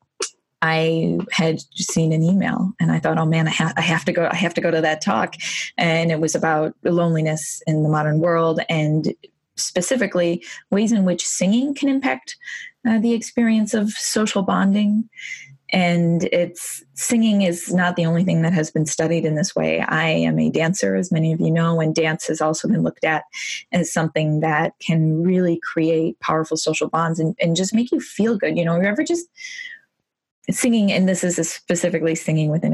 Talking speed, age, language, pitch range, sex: 190 wpm, 20-39, English, 160-190 Hz, female